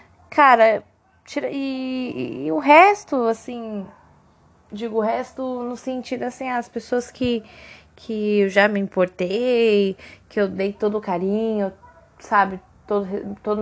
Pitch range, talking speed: 225-325 Hz, 130 wpm